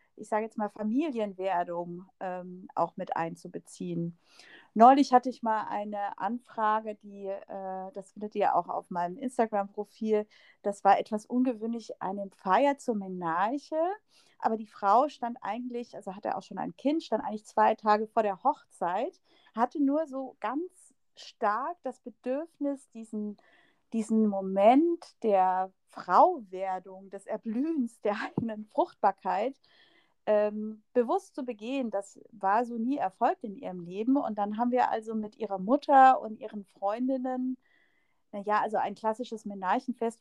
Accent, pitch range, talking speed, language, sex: German, 195-250 Hz, 140 wpm, German, female